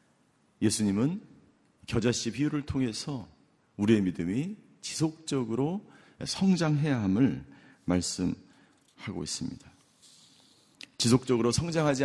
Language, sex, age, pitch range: Korean, male, 40-59, 115-145 Hz